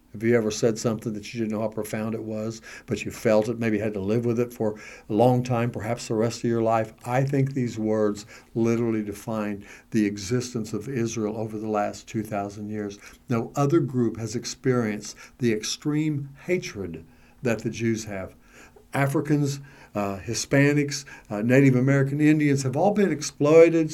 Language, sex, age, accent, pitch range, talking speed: English, male, 60-79, American, 115-155 Hz, 180 wpm